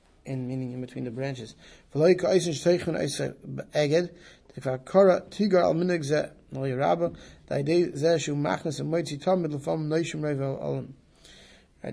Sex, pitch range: male, 135-165 Hz